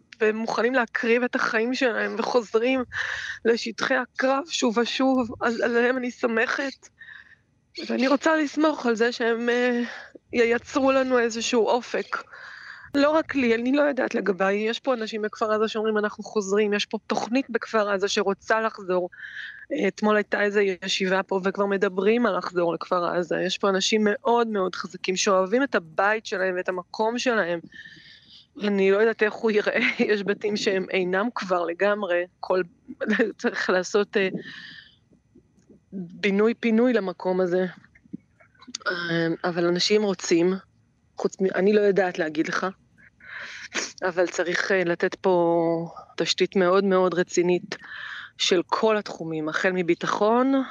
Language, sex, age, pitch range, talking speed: Hebrew, female, 20-39, 185-235 Hz, 135 wpm